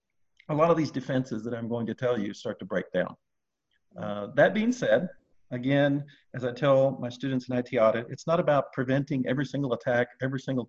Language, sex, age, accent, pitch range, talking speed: English, male, 50-69, American, 120-145 Hz, 210 wpm